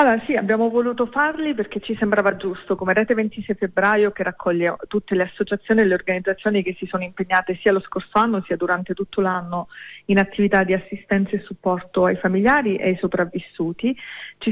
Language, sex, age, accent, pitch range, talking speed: Italian, female, 30-49, native, 185-215 Hz, 185 wpm